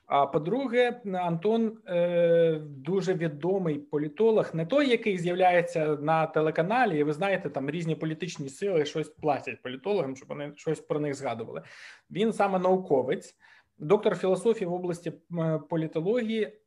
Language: Ukrainian